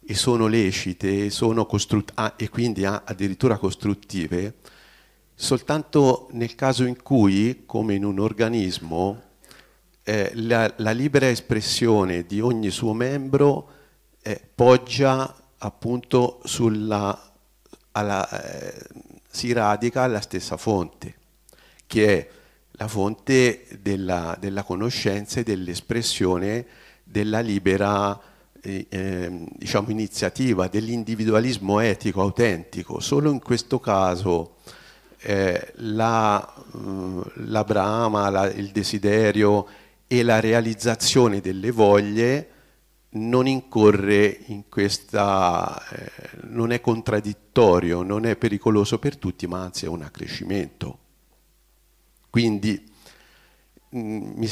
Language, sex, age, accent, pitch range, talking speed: Italian, male, 50-69, native, 100-120 Hz, 95 wpm